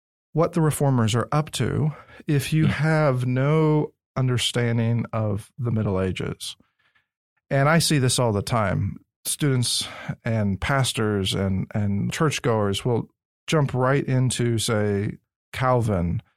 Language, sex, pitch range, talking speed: English, male, 110-145 Hz, 125 wpm